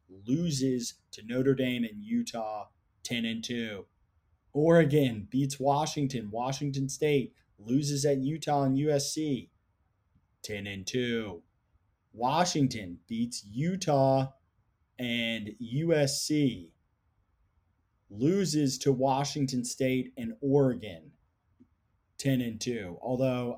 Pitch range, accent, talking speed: 110-135 Hz, American, 85 wpm